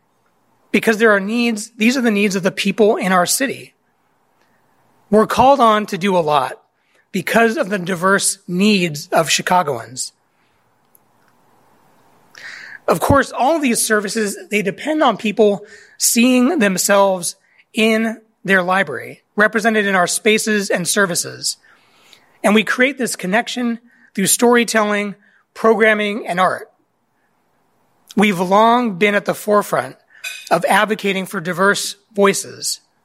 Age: 30-49